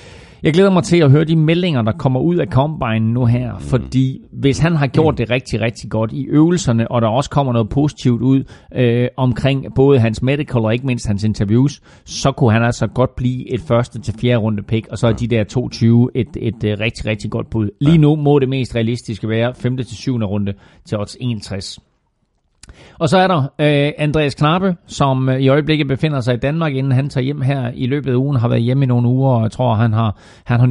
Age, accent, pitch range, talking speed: 40-59, native, 115-140 Hz, 225 wpm